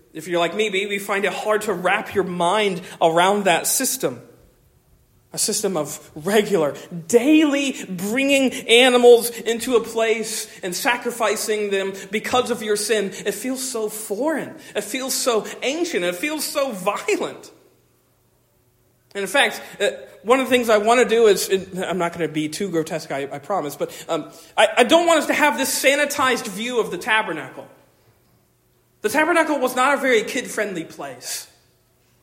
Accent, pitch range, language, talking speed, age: American, 200-260 Hz, English, 170 wpm, 40-59